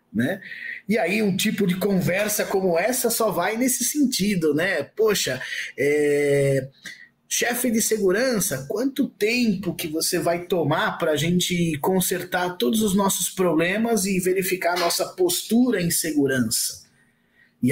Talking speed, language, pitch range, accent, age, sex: 140 wpm, Portuguese, 155-205 Hz, Brazilian, 20-39, male